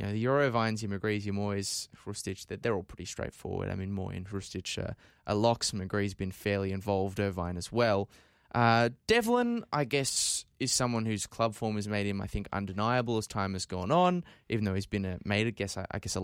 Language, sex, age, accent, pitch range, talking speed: English, male, 20-39, Australian, 100-120 Hz, 225 wpm